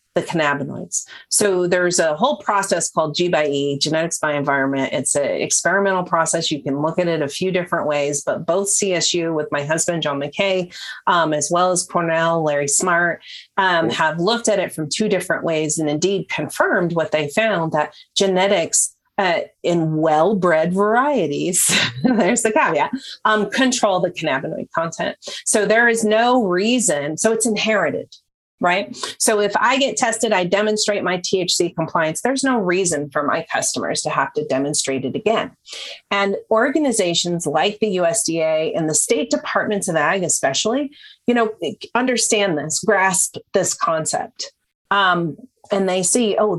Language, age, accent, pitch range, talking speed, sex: English, 40-59, American, 160-215 Hz, 160 wpm, female